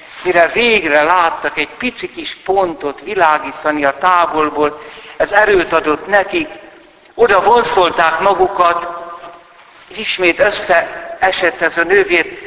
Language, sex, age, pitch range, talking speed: Hungarian, male, 60-79, 130-175 Hz, 110 wpm